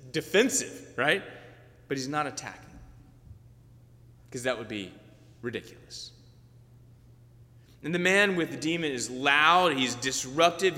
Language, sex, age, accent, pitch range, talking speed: English, male, 30-49, American, 120-135 Hz, 115 wpm